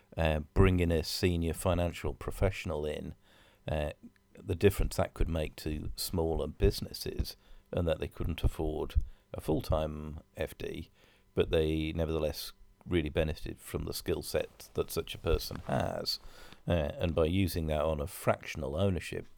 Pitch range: 80-95 Hz